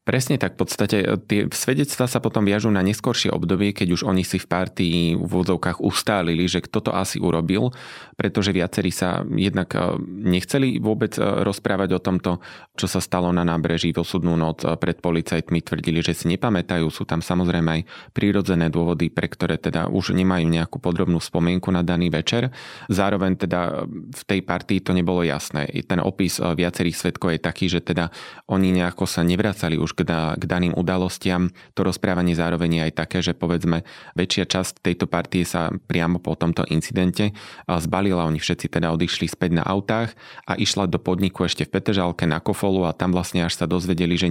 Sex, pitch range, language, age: male, 85-95 Hz, Slovak, 20-39